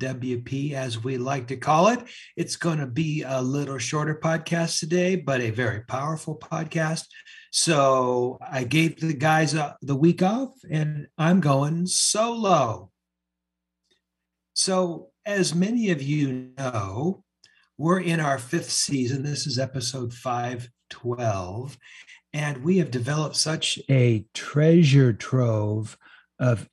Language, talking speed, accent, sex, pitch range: English, 130 wpm, American, male, 125-160 Hz